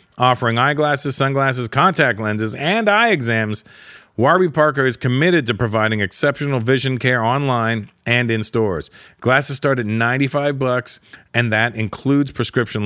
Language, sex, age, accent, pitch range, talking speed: English, male, 40-59, American, 110-140 Hz, 140 wpm